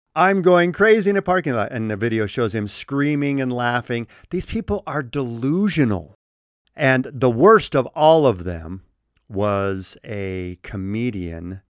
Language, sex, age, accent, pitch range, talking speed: English, male, 50-69, American, 100-140 Hz, 150 wpm